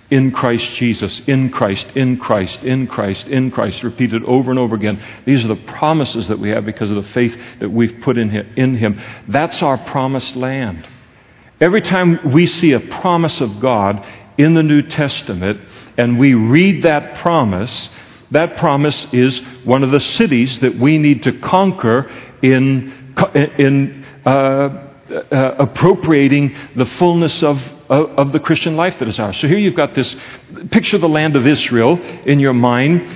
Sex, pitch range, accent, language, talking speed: male, 125-160 Hz, American, English, 170 wpm